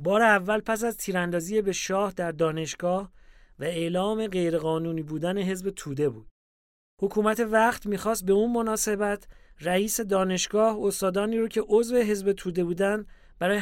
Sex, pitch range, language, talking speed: male, 170-215 Hz, English, 140 wpm